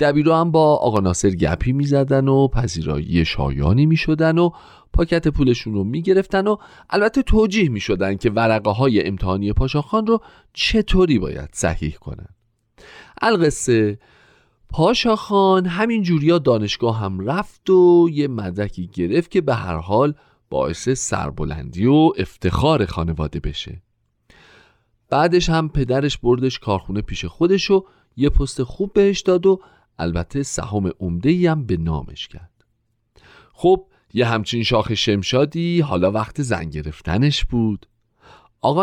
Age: 40-59